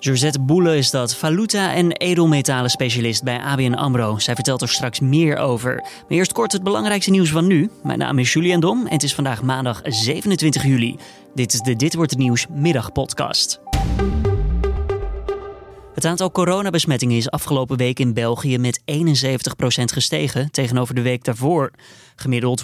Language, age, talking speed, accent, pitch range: Dutch, 20-39, 165 wpm, Dutch, 125-160 Hz